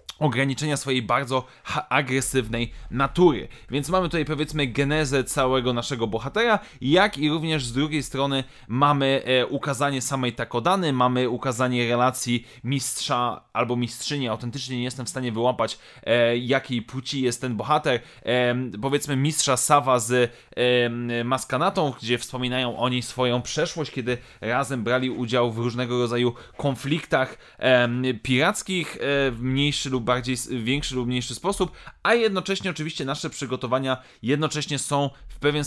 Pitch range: 125-145 Hz